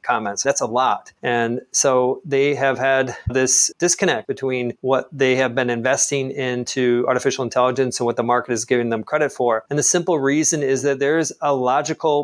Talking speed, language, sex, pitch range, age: 185 wpm, English, male, 130-150 Hz, 40-59